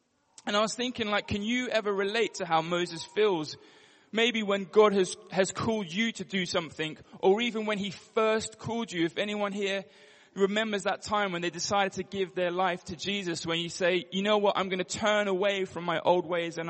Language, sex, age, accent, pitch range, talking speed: English, male, 20-39, British, 170-200 Hz, 220 wpm